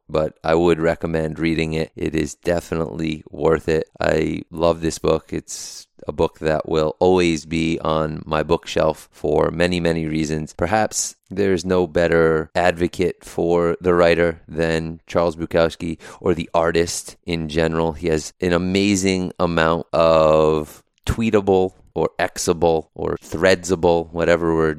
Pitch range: 80-90 Hz